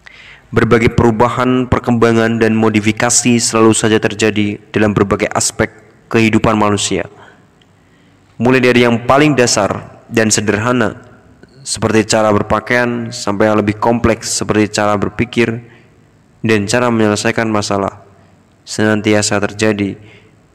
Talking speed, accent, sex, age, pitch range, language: 105 wpm, native, male, 20-39, 105-120 Hz, Indonesian